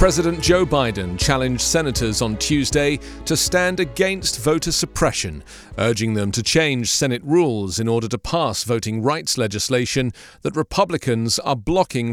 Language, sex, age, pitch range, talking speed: English, male, 40-59, 115-160 Hz, 145 wpm